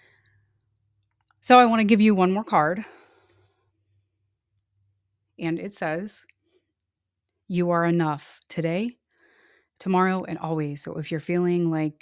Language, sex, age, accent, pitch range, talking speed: English, female, 30-49, American, 160-195 Hz, 120 wpm